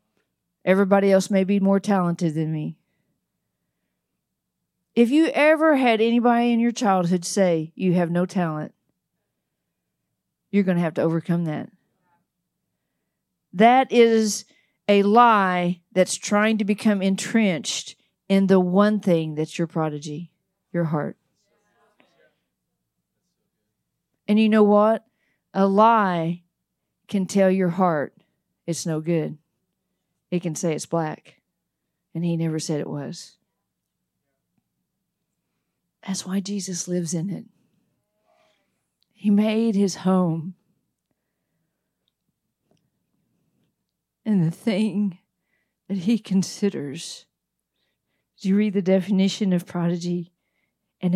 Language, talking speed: English, 110 wpm